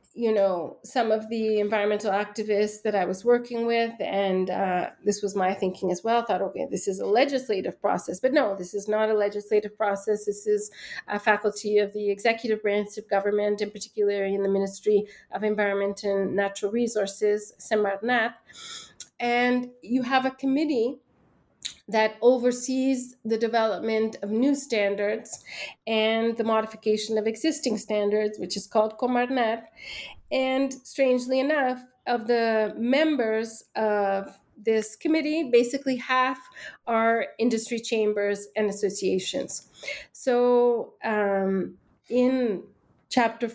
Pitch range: 205-240 Hz